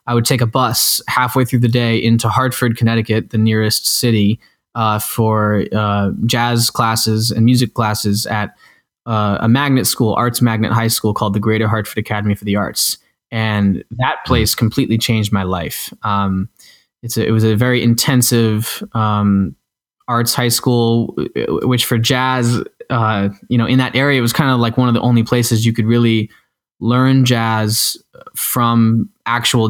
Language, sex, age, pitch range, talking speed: English, male, 20-39, 110-120 Hz, 170 wpm